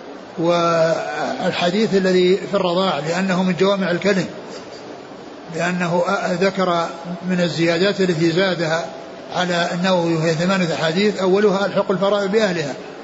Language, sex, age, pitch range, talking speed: Arabic, male, 60-79, 175-195 Hz, 105 wpm